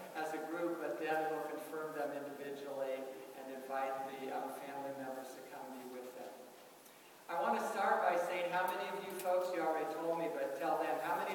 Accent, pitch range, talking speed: American, 155-180 Hz, 215 wpm